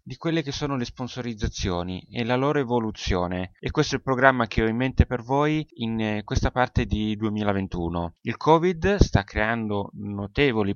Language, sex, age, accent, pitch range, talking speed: Italian, male, 20-39, native, 100-125 Hz, 175 wpm